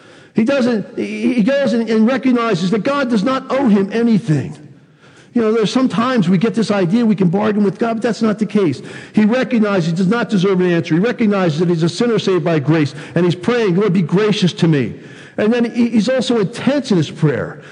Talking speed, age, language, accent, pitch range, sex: 220 wpm, 50-69, English, American, 140-210 Hz, male